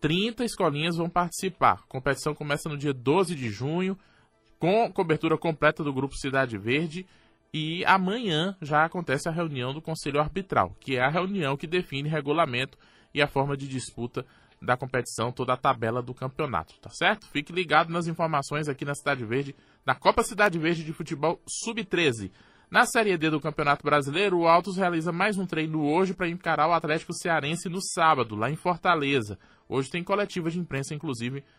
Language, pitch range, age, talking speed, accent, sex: Portuguese, 135-175 Hz, 20-39, 175 wpm, Brazilian, male